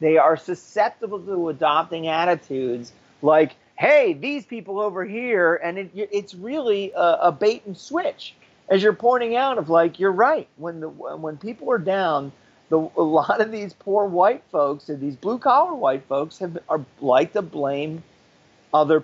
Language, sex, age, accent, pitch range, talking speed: English, male, 40-59, American, 140-190 Hz, 175 wpm